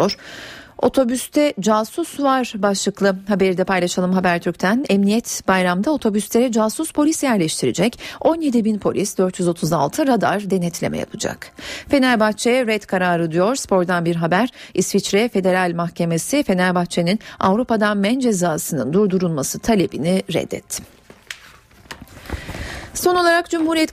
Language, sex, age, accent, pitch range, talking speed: Turkish, female, 40-59, native, 180-240 Hz, 105 wpm